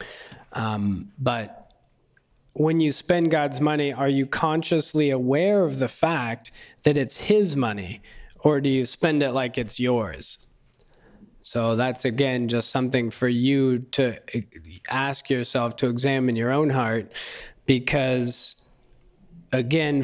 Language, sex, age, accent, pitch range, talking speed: English, male, 20-39, American, 115-140 Hz, 130 wpm